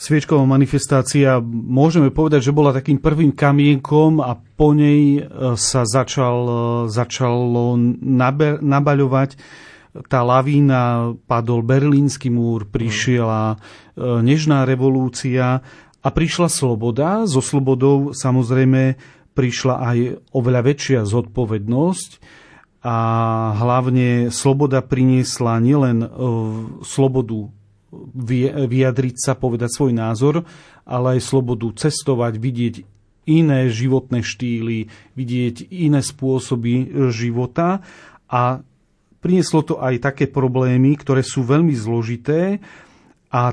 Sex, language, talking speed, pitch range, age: male, Slovak, 95 wpm, 120-145 Hz, 40-59